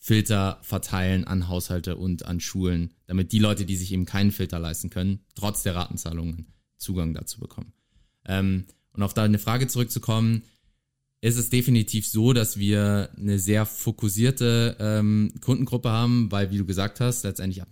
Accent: German